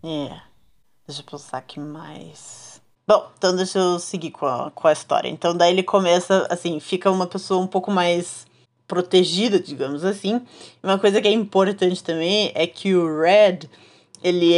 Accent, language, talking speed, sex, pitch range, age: Brazilian, Portuguese, 175 wpm, female, 175-210 Hz, 20-39